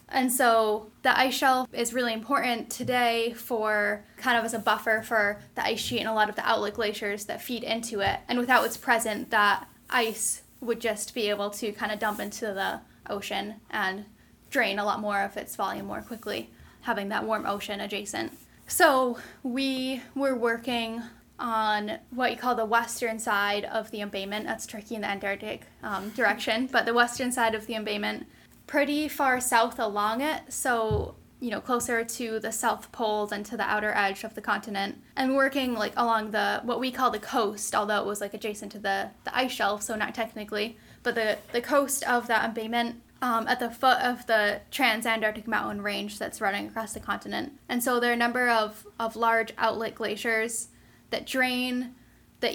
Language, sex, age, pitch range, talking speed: English, female, 10-29, 210-245 Hz, 195 wpm